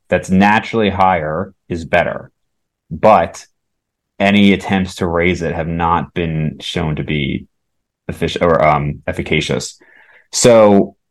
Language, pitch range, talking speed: English, 85-100 Hz, 120 wpm